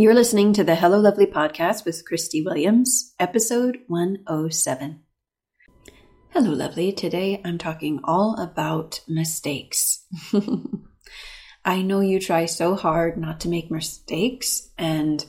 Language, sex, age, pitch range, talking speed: English, female, 30-49, 155-195 Hz, 120 wpm